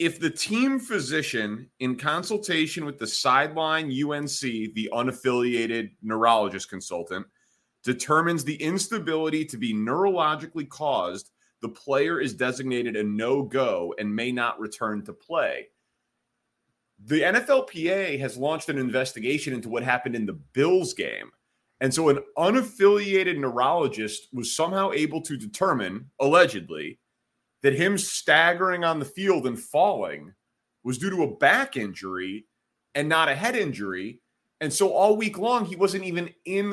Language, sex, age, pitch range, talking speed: English, male, 30-49, 120-180 Hz, 140 wpm